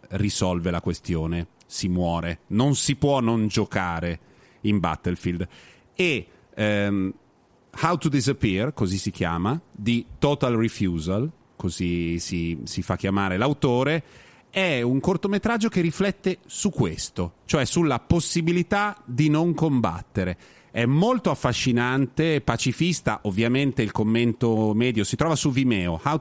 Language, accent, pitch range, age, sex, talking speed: Italian, native, 105-160 Hz, 40-59, male, 125 wpm